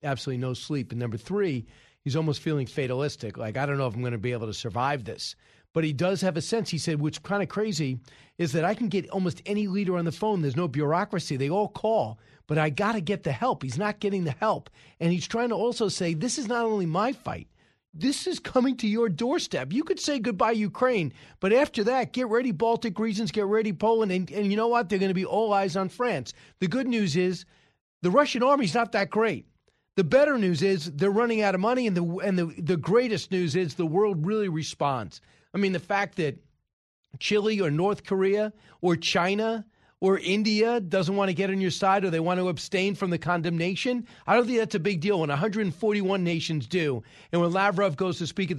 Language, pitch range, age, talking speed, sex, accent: English, 160-215 Hz, 40-59, 230 wpm, male, American